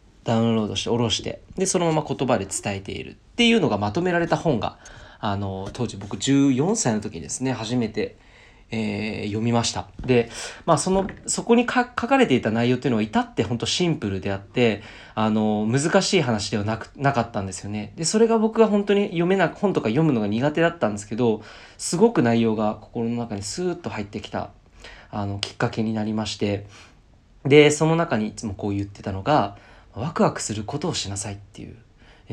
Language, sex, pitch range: Japanese, male, 105-160 Hz